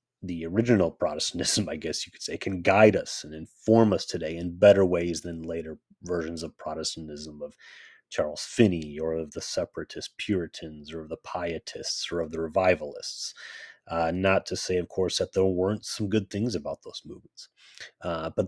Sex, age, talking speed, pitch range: male, 30-49, 180 wpm, 80-100 Hz